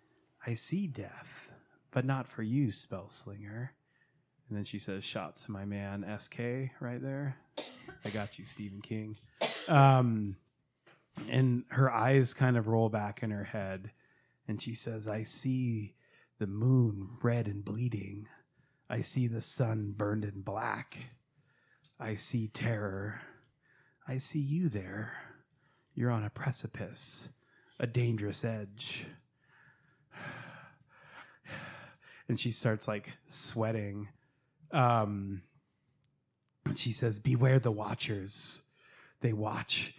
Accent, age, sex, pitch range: American, 30-49, male, 110-140 Hz